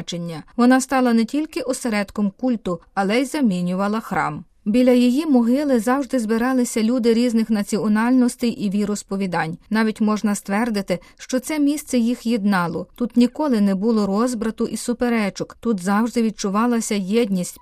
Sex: female